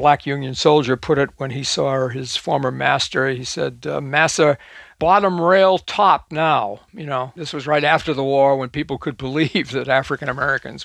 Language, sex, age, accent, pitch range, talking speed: English, male, 60-79, American, 145-195 Hz, 185 wpm